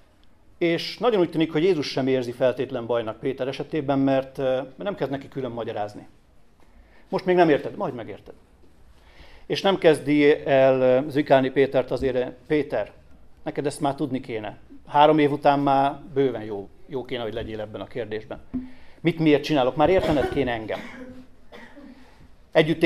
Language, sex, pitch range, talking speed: Hungarian, male, 125-155 Hz, 150 wpm